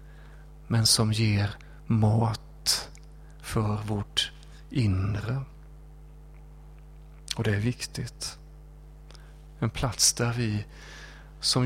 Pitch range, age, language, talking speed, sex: 110-150 Hz, 40-59, Swedish, 80 wpm, male